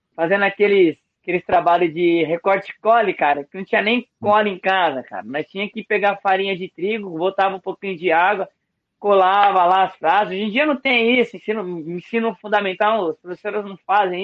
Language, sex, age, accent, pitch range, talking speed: Portuguese, male, 20-39, Brazilian, 180-235 Hz, 195 wpm